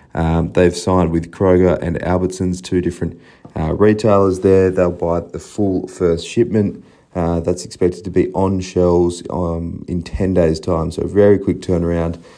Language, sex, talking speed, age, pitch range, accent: English, male, 170 wpm, 30-49, 85-95 Hz, Australian